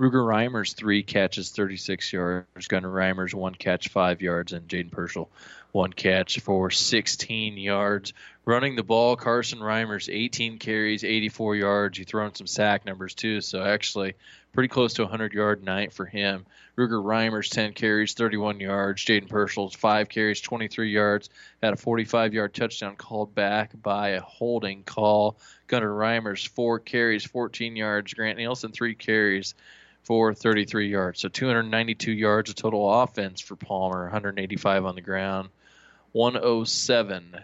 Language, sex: English, male